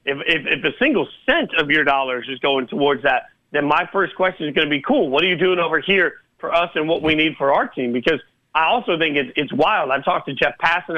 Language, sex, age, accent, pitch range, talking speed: English, male, 40-59, American, 140-170 Hz, 270 wpm